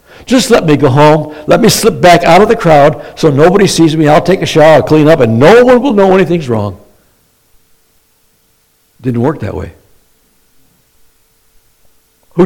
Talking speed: 170 wpm